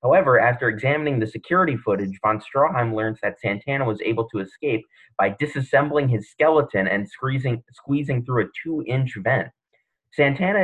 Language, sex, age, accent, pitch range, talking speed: English, male, 30-49, American, 105-150 Hz, 150 wpm